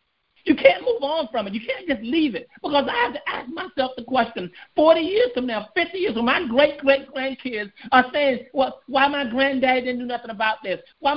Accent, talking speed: American, 220 wpm